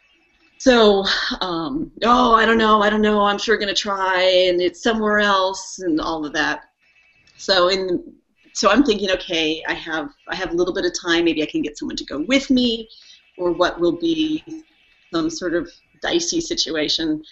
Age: 30-49